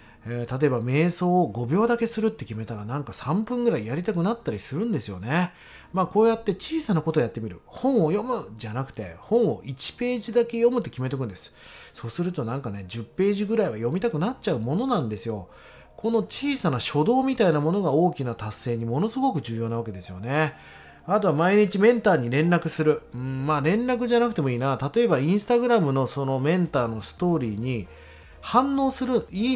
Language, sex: Japanese, male